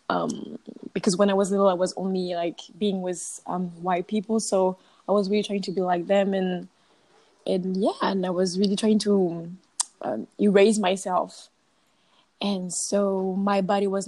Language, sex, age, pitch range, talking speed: English, female, 20-39, 185-225 Hz, 175 wpm